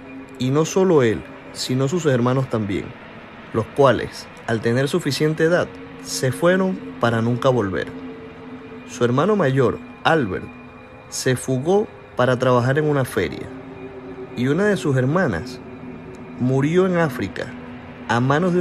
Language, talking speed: Spanish, 130 wpm